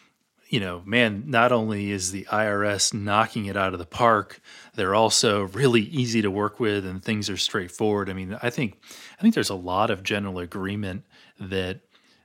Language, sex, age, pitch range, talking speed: English, male, 30-49, 95-110 Hz, 185 wpm